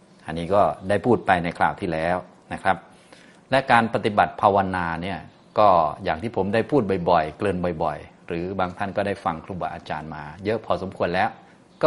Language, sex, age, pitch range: Thai, male, 30-49, 95-115 Hz